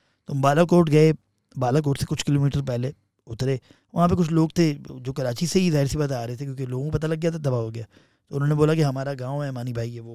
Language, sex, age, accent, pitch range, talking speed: English, male, 30-49, Indian, 125-175 Hz, 255 wpm